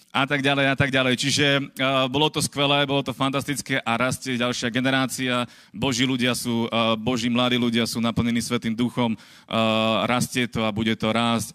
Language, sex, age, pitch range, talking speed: Slovak, male, 30-49, 115-135 Hz, 185 wpm